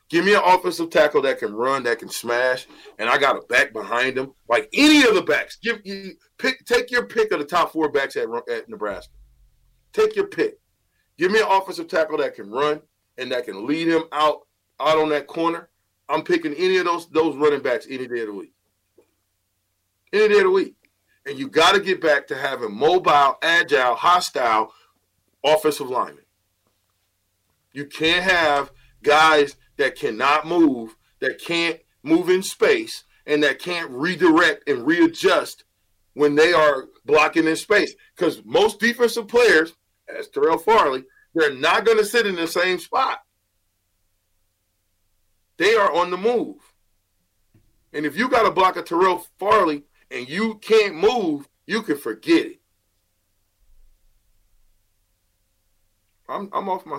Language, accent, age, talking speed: English, American, 40-59, 160 wpm